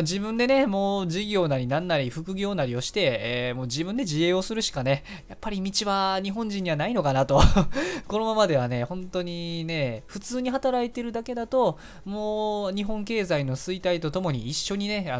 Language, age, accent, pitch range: Japanese, 20-39, native, 120-170 Hz